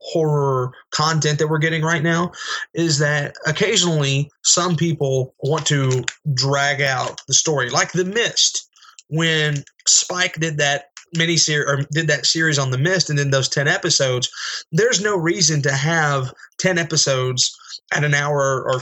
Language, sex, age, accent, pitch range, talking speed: English, male, 20-39, American, 140-170 Hz, 160 wpm